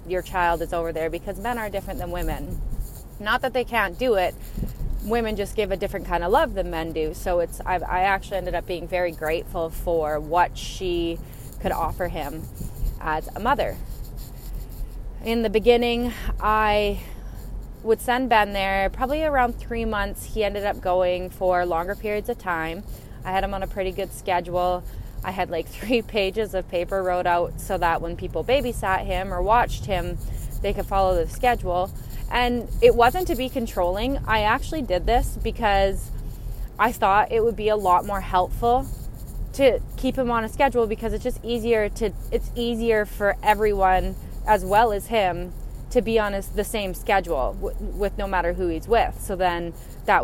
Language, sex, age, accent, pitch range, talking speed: English, female, 20-39, American, 175-225 Hz, 185 wpm